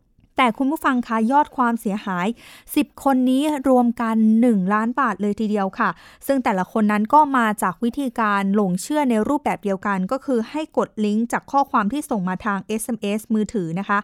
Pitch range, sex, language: 210-260 Hz, female, Thai